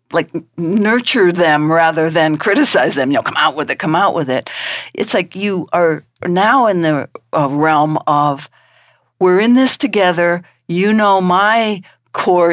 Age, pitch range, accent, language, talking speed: 60-79, 145-185 Hz, American, English, 170 wpm